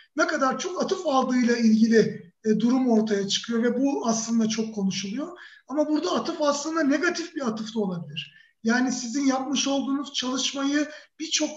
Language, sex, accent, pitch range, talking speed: Turkish, male, native, 240-295 Hz, 150 wpm